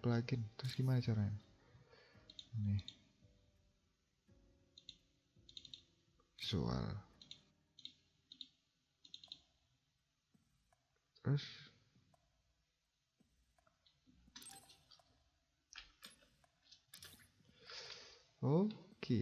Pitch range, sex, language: 100-125 Hz, male, Indonesian